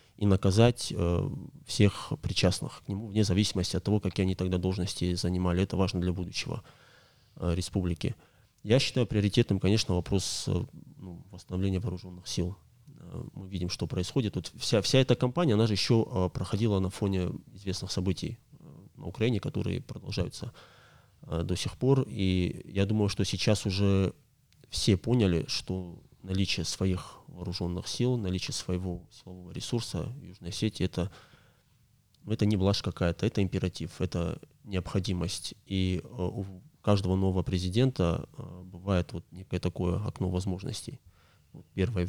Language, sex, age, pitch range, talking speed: Russian, male, 20-39, 90-110 Hz, 130 wpm